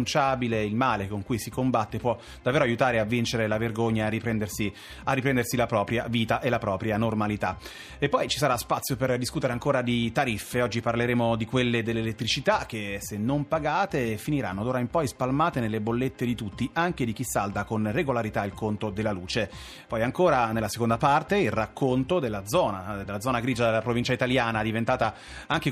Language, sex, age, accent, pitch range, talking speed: Italian, male, 30-49, native, 110-130 Hz, 185 wpm